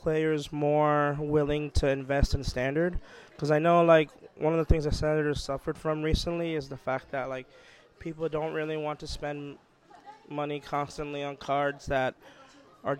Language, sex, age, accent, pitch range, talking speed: English, male, 20-39, American, 135-155 Hz, 175 wpm